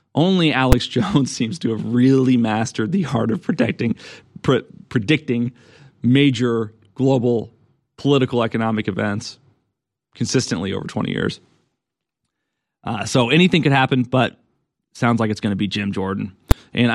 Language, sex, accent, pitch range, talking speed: English, male, American, 110-135 Hz, 125 wpm